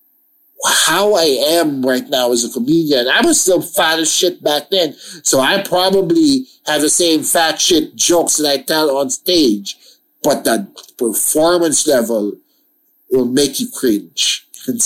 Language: English